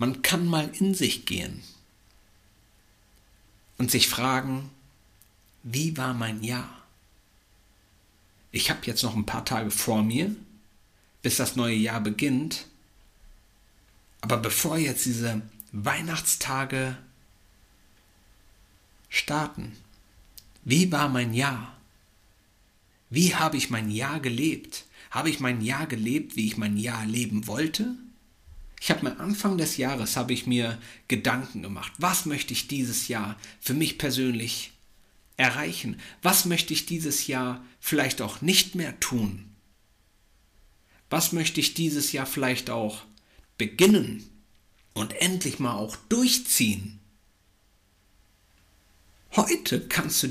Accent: German